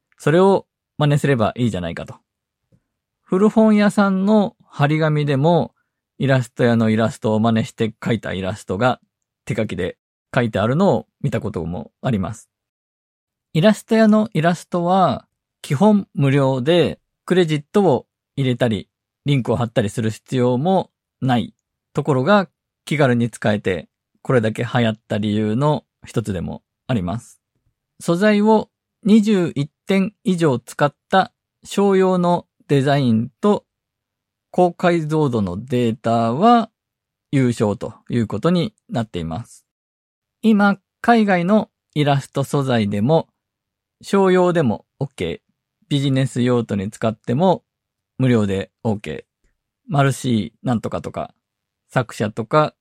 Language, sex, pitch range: Japanese, male, 115-175 Hz